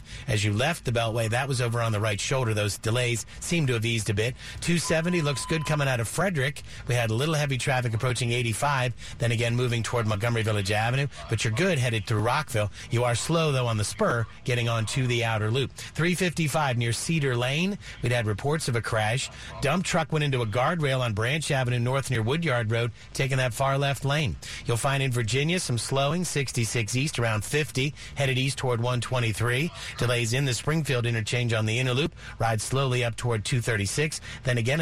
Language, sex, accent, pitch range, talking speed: English, male, American, 115-145 Hz, 205 wpm